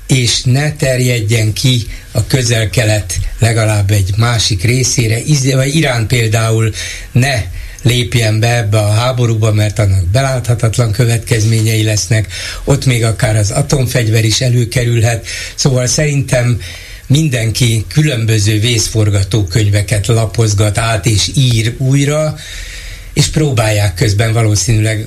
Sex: male